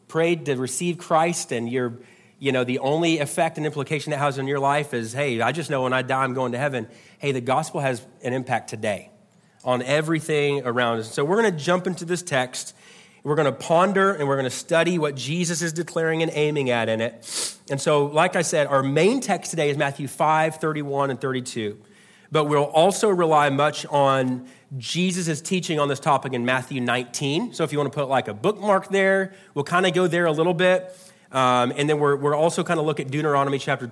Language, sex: English, male